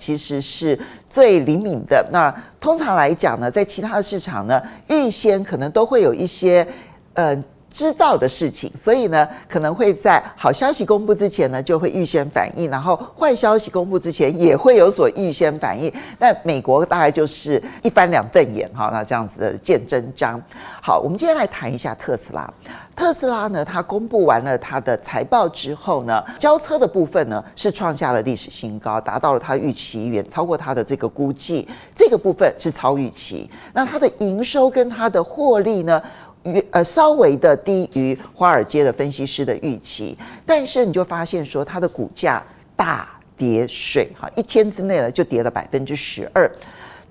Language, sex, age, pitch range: Chinese, male, 50-69, 140-235 Hz